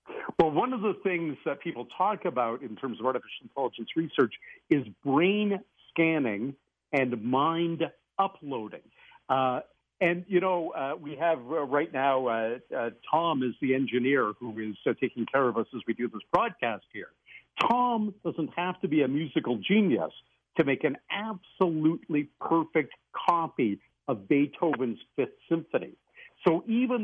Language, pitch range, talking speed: English, 135-190 Hz, 155 wpm